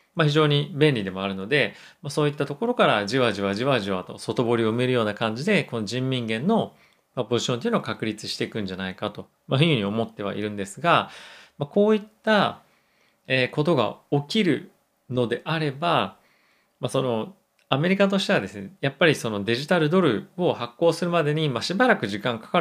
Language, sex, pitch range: Japanese, male, 110-170 Hz